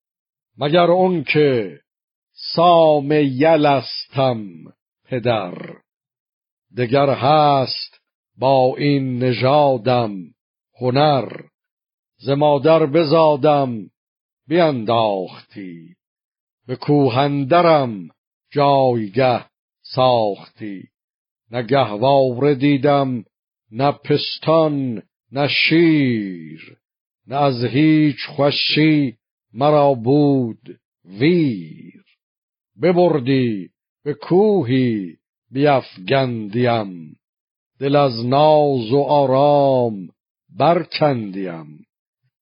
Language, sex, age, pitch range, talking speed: Persian, male, 50-69, 120-145 Hz, 60 wpm